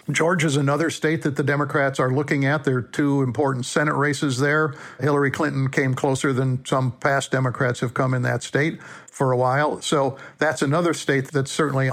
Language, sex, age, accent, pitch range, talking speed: English, male, 60-79, American, 130-155 Hz, 195 wpm